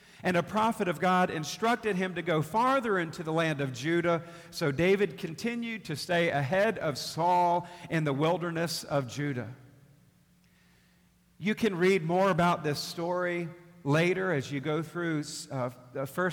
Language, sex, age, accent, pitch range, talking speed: English, male, 50-69, American, 155-195 Hz, 155 wpm